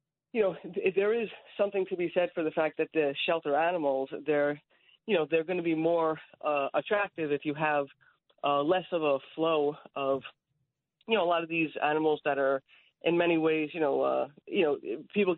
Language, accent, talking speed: English, American, 205 wpm